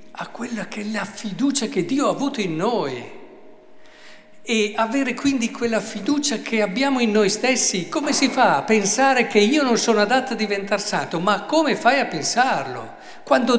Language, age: Italian, 50-69